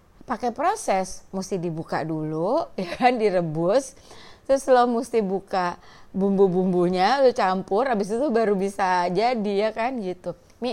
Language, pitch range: Indonesian, 175-225 Hz